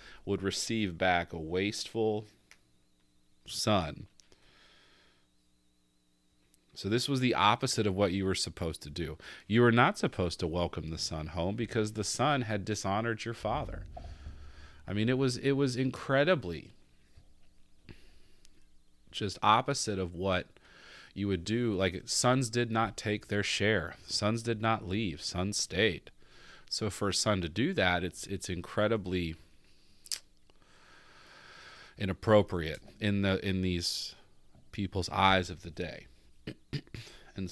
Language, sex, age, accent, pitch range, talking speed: English, male, 40-59, American, 80-110 Hz, 130 wpm